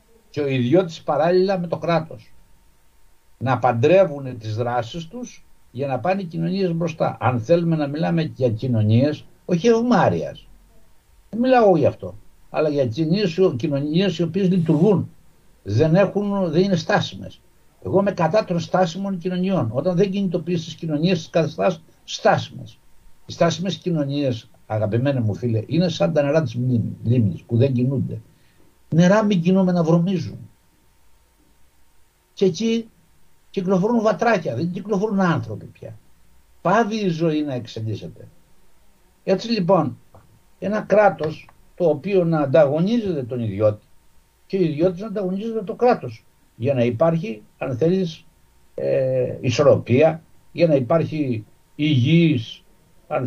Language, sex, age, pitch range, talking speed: Greek, male, 60-79, 125-190 Hz, 130 wpm